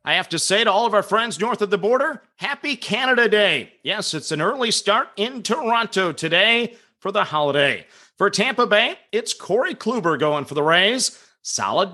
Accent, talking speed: American, 190 wpm